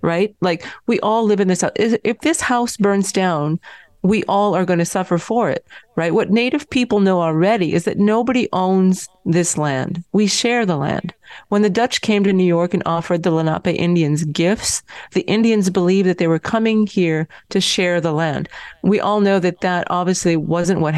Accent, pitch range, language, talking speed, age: American, 170-205 Hz, English, 200 wpm, 40-59